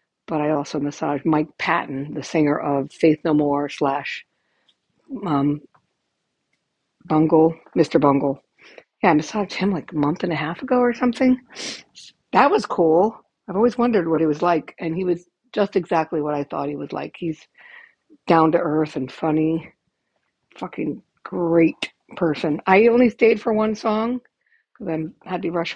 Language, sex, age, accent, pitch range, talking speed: English, female, 60-79, American, 155-195 Hz, 165 wpm